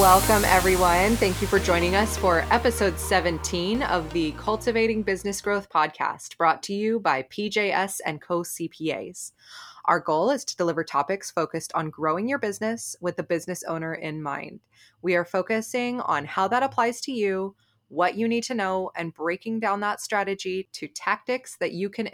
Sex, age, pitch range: female, 20-39, 165-205 Hz